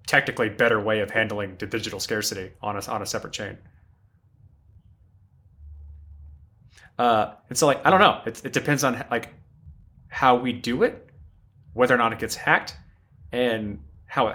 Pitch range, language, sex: 90-125 Hz, English, male